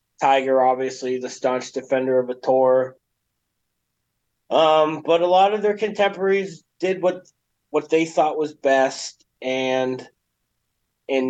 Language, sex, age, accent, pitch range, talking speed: English, male, 30-49, American, 135-185 Hz, 125 wpm